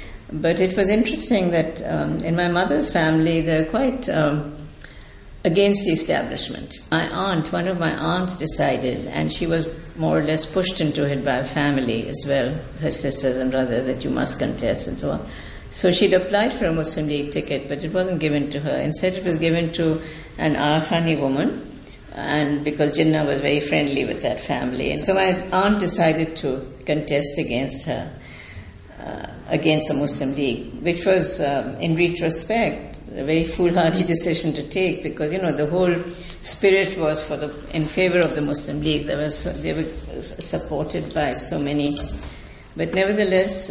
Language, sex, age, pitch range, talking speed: English, female, 60-79, 145-175 Hz, 175 wpm